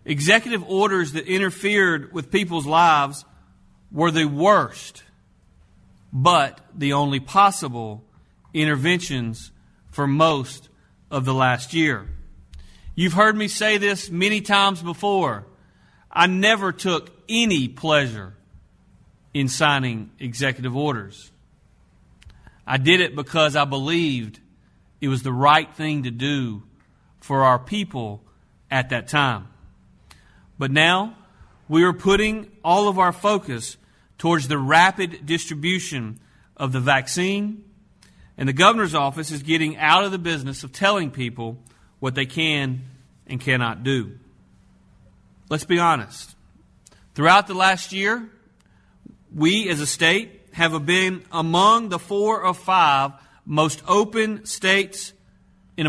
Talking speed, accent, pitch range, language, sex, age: 120 wpm, American, 130-185 Hz, English, male, 40-59